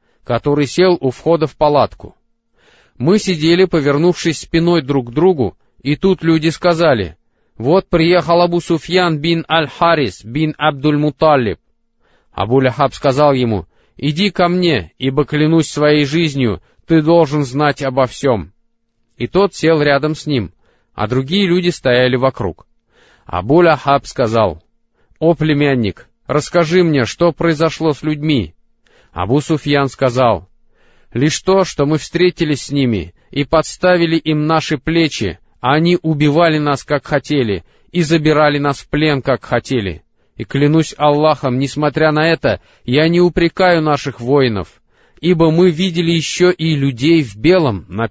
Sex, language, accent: male, Russian, native